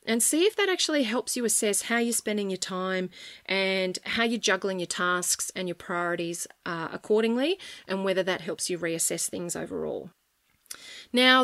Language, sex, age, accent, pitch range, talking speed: English, female, 30-49, Australian, 185-250 Hz, 175 wpm